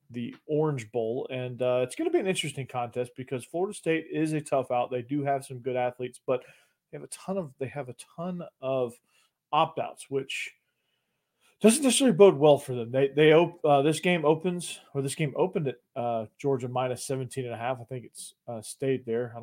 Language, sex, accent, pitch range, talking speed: English, male, American, 125-145 Hz, 220 wpm